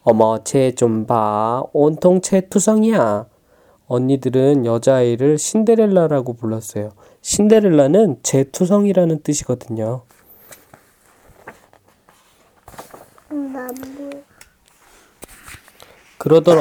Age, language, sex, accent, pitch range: 20-39, Korean, male, native, 120-165 Hz